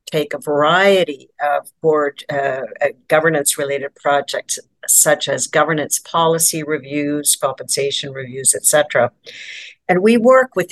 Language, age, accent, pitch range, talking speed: English, 50-69, American, 145-185 Hz, 130 wpm